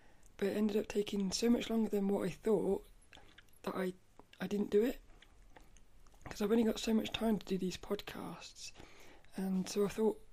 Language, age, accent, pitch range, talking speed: English, 20-39, British, 185-210 Hz, 190 wpm